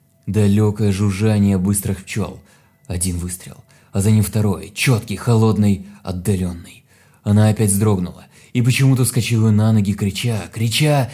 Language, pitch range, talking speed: Russian, 95-115 Hz, 125 wpm